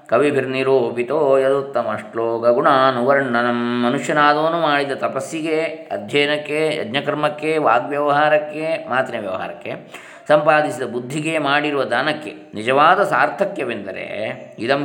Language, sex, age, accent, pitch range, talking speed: Kannada, male, 20-39, native, 125-155 Hz, 75 wpm